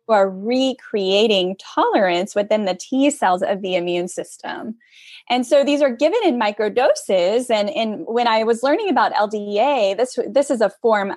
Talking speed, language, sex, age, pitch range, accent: 165 wpm, English, female, 10-29, 200-255 Hz, American